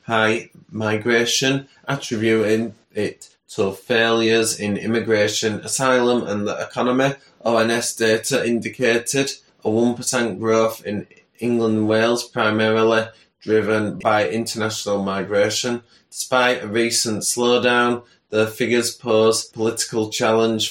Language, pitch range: English, 105-115 Hz